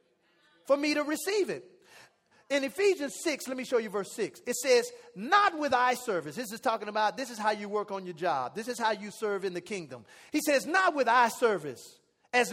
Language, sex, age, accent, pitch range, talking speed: English, male, 40-59, American, 210-300 Hz, 225 wpm